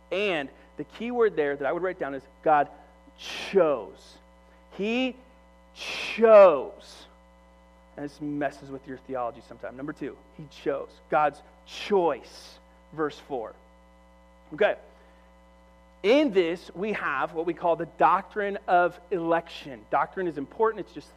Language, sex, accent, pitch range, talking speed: English, male, American, 140-185 Hz, 135 wpm